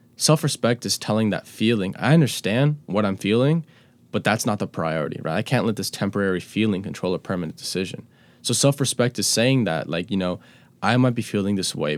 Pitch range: 100-125 Hz